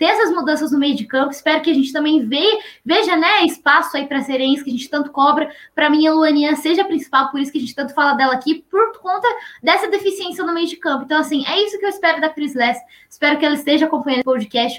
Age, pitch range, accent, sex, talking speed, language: 10-29, 260-315 Hz, Brazilian, female, 265 wpm, Portuguese